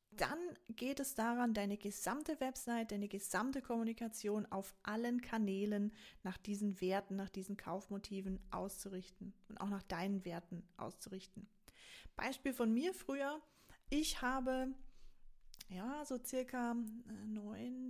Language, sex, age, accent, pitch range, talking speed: German, female, 30-49, German, 195-245 Hz, 120 wpm